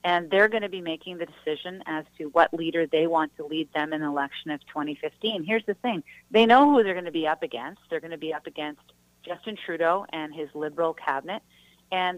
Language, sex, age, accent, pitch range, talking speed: English, female, 40-59, American, 150-180 Hz, 230 wpm